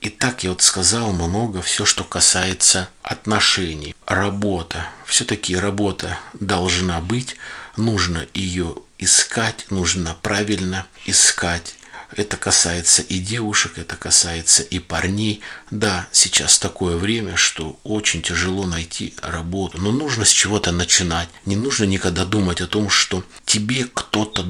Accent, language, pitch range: native, Russian, 85-105 Hz